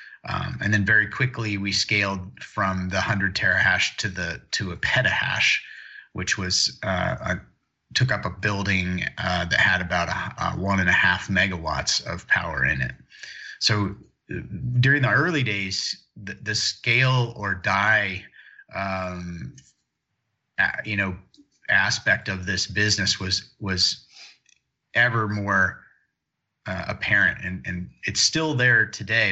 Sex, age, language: male, 30-49, English